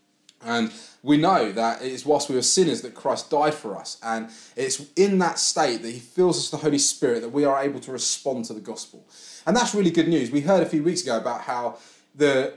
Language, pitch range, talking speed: English, 130-175 Hz, 240 wpm